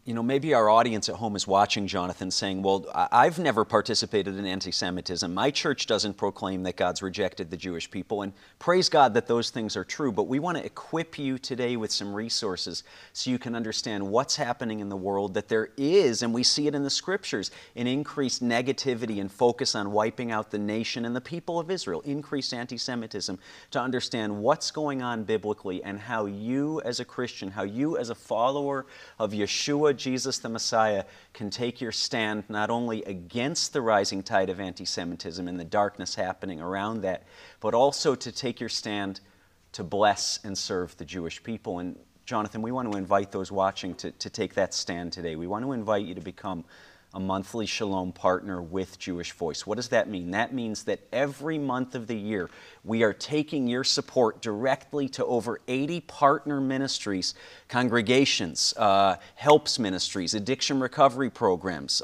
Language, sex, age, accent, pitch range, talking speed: English, male, 40-59, American, 100-135 Hz, 185 wpm